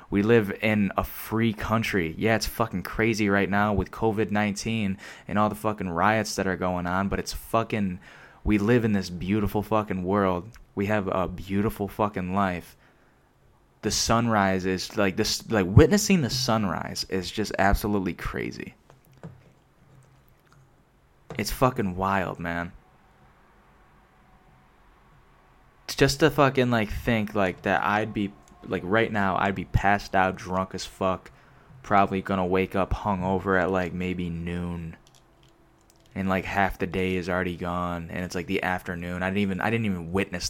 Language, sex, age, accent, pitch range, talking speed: English, male, 10-29, American, 90-105 Hz, 155 wpm